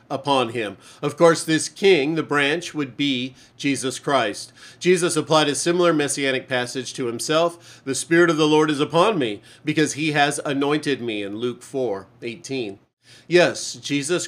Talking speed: 160 wpm